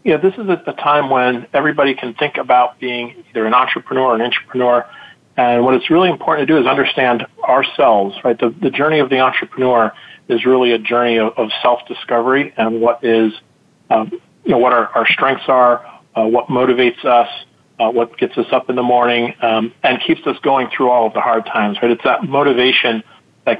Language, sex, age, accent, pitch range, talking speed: English, male, 40-59, American, 120-140 Hz, 205 wpm